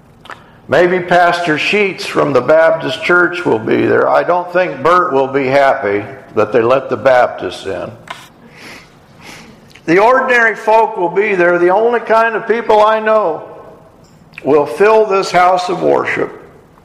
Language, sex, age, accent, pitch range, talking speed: English, male, 50-69, American, 155-200 Hz, 150 wpm